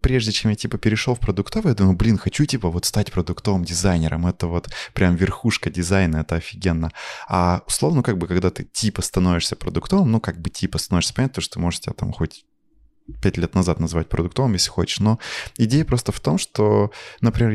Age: 20-39